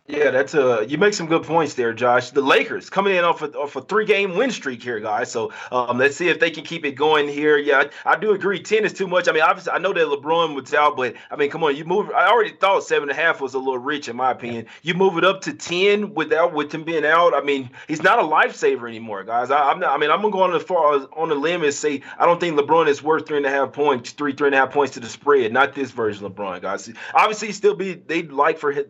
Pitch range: 135-205 Hz